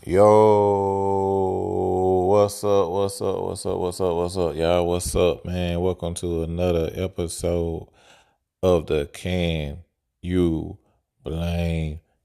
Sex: male